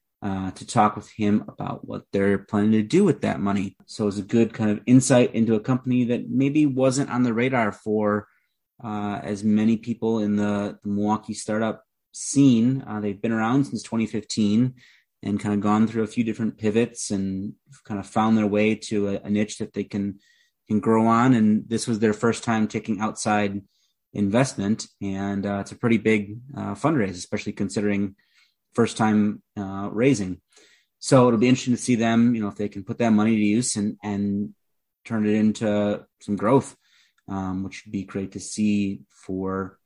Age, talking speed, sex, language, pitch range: 30-49, 195 wpm, male, English, 105-120 Hz